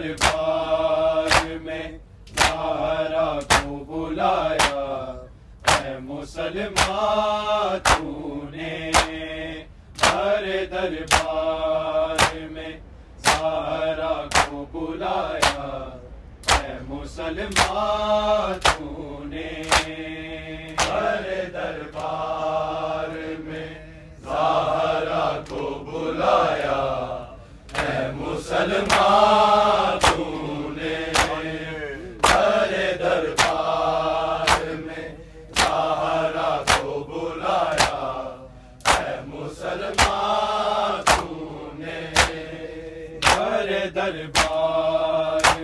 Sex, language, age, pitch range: male, Urdu, 40-59, 155-165 Hz